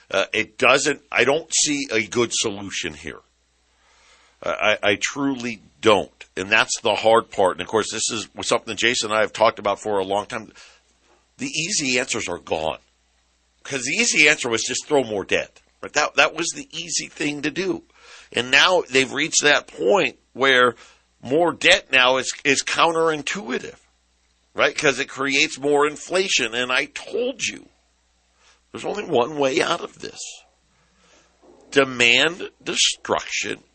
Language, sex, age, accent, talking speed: English, male, 50-69, American, 165 wpm